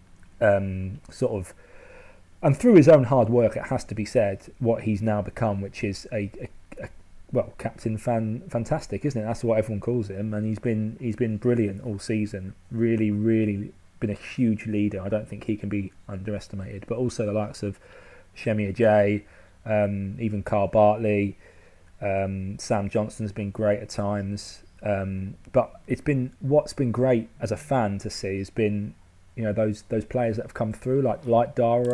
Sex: male